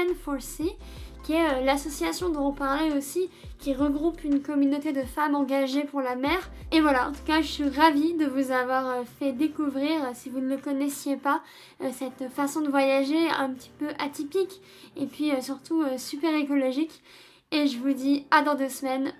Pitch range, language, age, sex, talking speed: 250-295 Hz, French, 10-29, female, 180 wpm